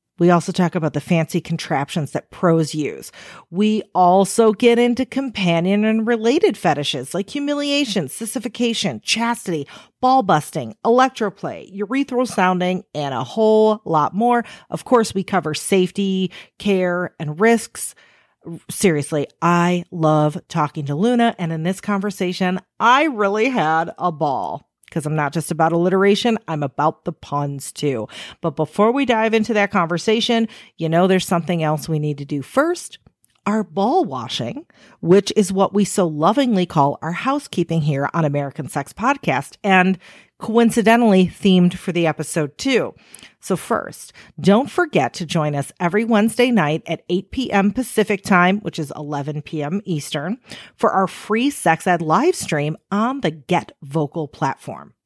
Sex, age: female, 40-59